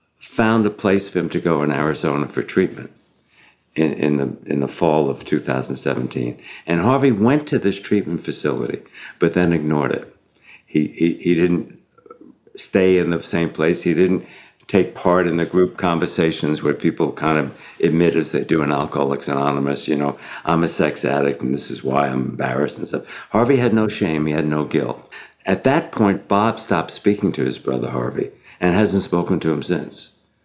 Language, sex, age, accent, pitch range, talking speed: English, male, 60-79, American, 75-95 Hz, 190 wpm